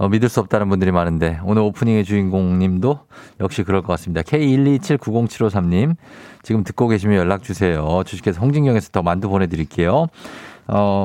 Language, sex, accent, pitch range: Korean, male, native, 95-135 Hz